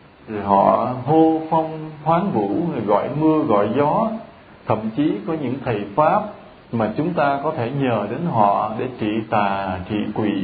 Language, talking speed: English, 170 wpm